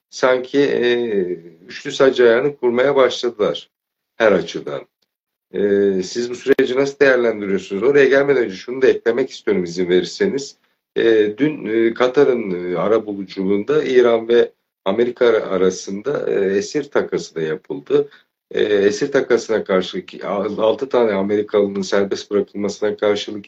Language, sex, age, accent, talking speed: Turkish, male, 50-69, native, 130 wpm